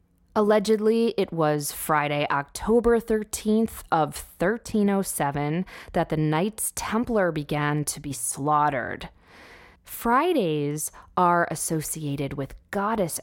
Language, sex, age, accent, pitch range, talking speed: English, female, 20-39, American, 145-205 Hz, 95 wpm